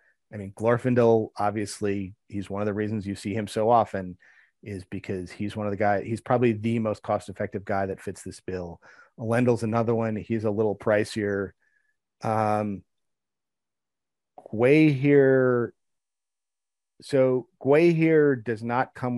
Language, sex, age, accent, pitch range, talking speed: English, male, 40-59, American, 100-120 Hz, 145 wpm